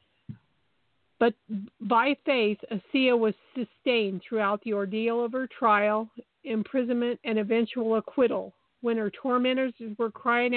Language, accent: English, American